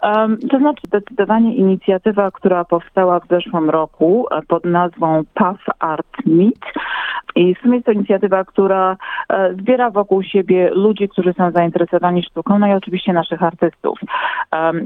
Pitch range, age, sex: 165-200 Hz, 40-59, female